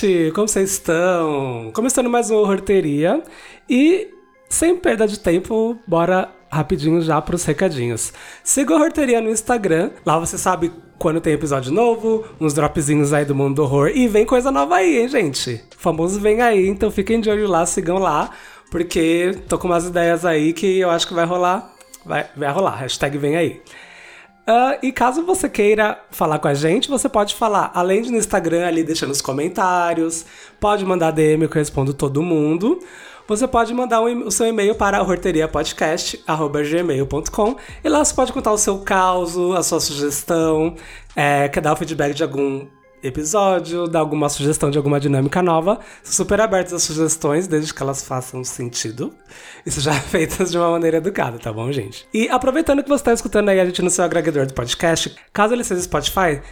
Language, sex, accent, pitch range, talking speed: Portuguese, male, Brazilian, 155-210 Hz, 185 wpm